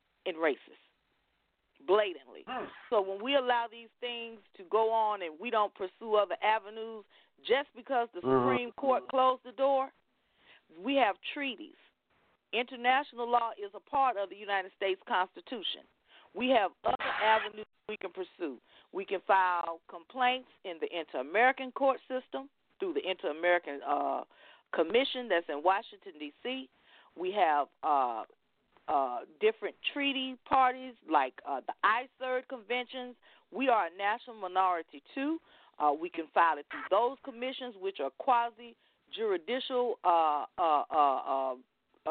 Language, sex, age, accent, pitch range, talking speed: English, female, 40-59, American, 195-265 Hz, 135 wpm